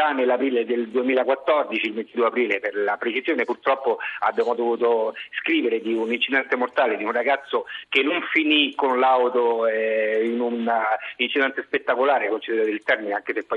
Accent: native